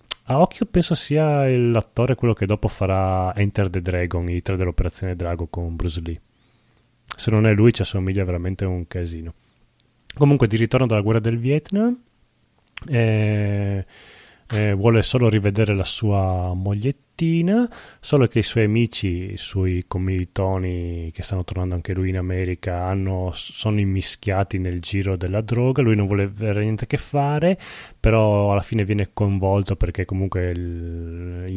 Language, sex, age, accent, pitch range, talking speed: Italian, male, 30-49, native, 95-115 Hz, 150 wpm